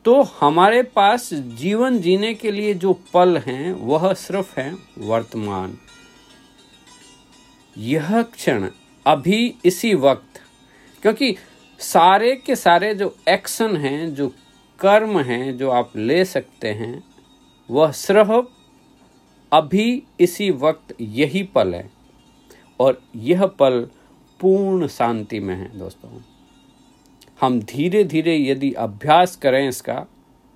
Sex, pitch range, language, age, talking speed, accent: male, 130-200 Hz, Hindi, 50-69, 110 wpm, native